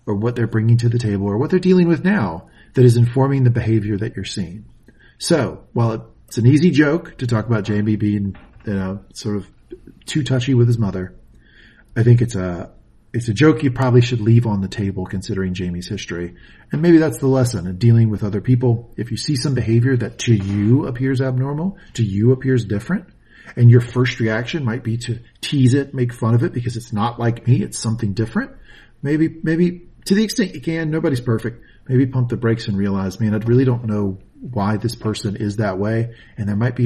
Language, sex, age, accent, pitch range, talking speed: English, male, 40-59, American, 105-125 Hz, 215 wpm